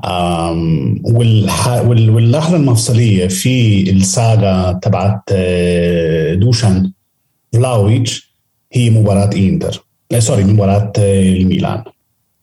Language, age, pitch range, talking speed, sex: Arabic, 40-59, 100-120 Hz, 70 wpm, male